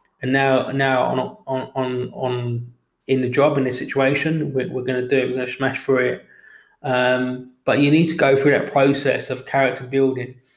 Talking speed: 210 wpm